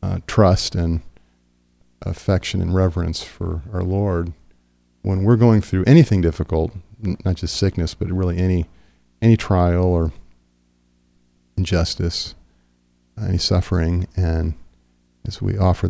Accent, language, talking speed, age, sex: American, English, 120 wpm, 40-59, male